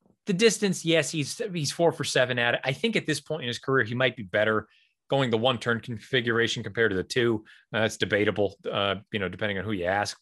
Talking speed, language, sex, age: 240 wpm, English, male, 30-49